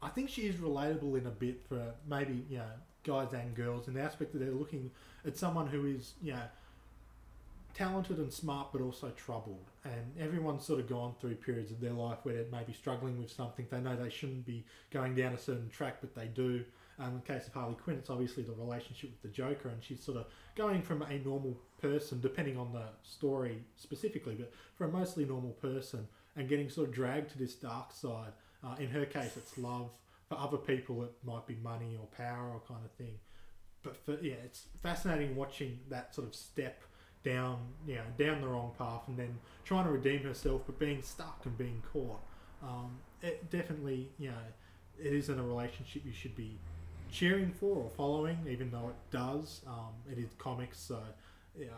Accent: Australian